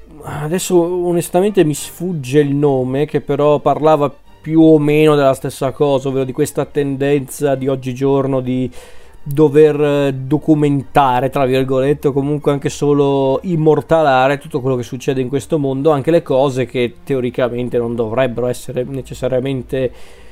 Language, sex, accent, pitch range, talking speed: Italian, male, native, 125-145 Hz, 140 wpm